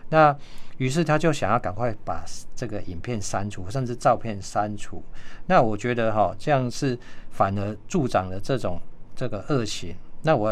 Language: Chinese